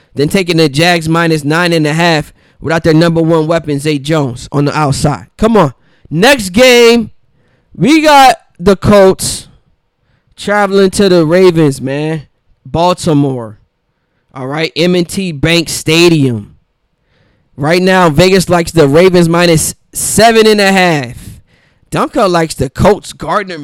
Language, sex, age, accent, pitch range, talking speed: English, male, 20-39, American, 155-200 Hz, 135 wpm